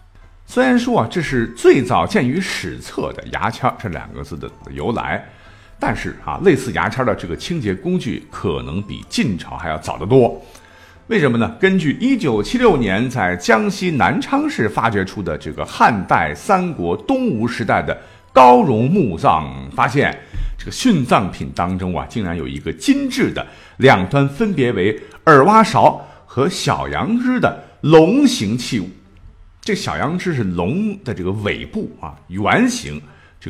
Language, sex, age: Chinese, male, 50-69